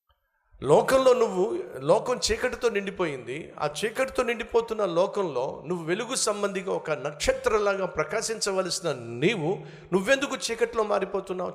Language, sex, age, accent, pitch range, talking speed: Telugu, male, 50-69, native, 120-205 Hz, 105 wpm